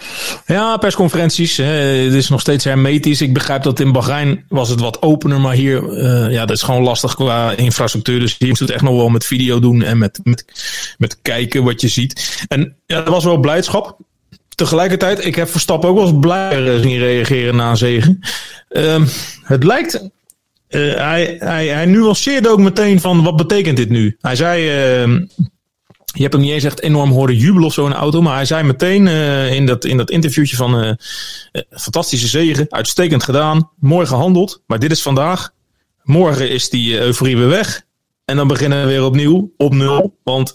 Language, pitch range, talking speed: Dutch, 125-165 Hz, 195 wpm